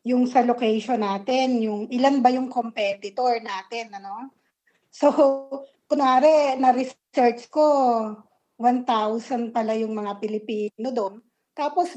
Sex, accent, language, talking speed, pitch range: female, native, Filipino, 110 wpm, 235-300 Hz